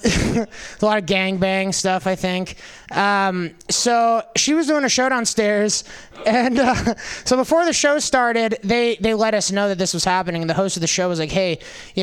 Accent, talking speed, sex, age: American, 205 wpm, male, 20-39